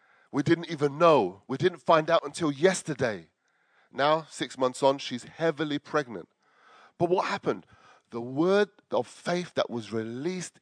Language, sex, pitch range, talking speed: English, male, 120-175 Hz, 155 wpm